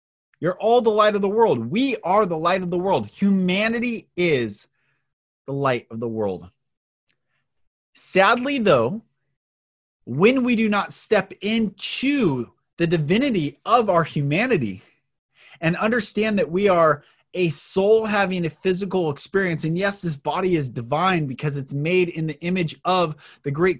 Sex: male